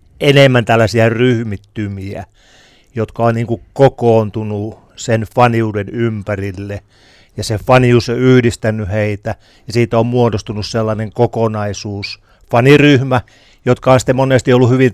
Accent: native